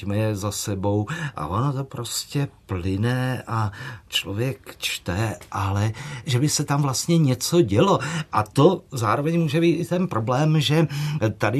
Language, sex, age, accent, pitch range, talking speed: Czech, male, 50-69, native, 105-145 Hz, 150 wpm